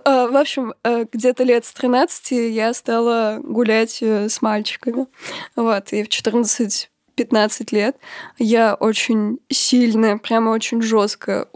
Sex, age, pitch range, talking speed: female, 20-39, 215-240 Hz, 115 wpm